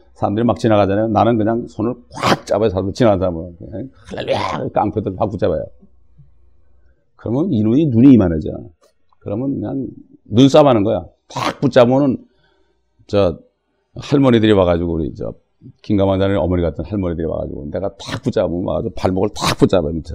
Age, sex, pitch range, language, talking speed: 40-59, male, 90-135 Hz, English, 125 wpm